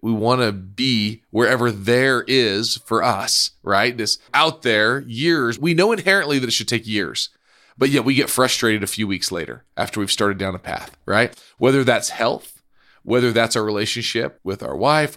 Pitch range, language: 110-140 Hz, English